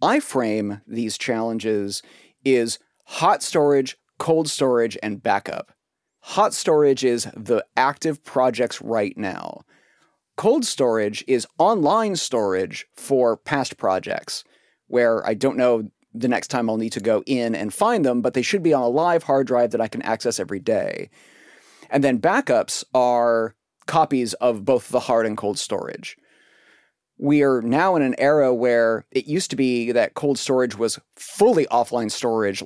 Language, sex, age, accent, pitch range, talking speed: English, male, 30-49, American, 115-140 Hz, 160 wpm